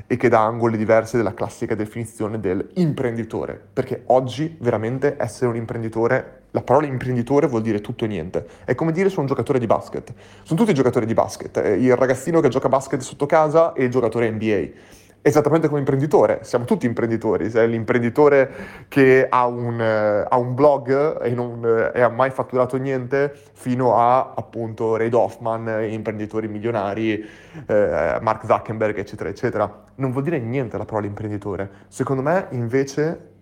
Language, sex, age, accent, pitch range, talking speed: Italian, male, 20-39, native, 110-140 Hz, 165 wpm